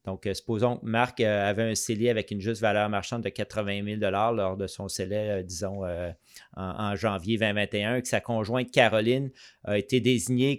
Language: French